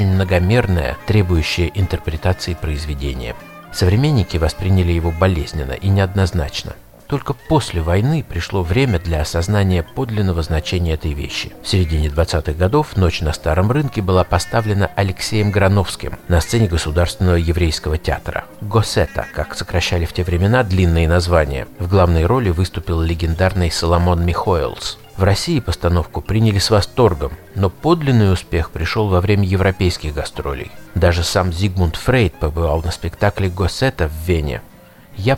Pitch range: 85-105 Hz